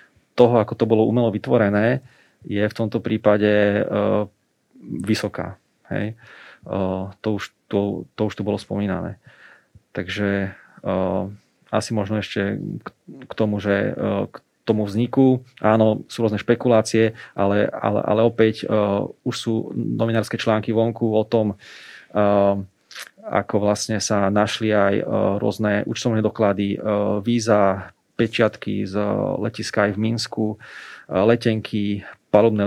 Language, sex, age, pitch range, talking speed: Slovak, male, 30-49, 100-110 Hz, 130 wpm